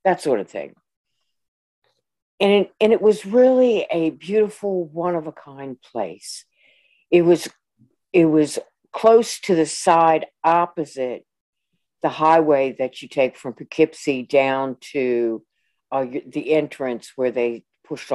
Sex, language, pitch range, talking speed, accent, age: female, English, 135-170 Hz, 130 wpm, American, 60-79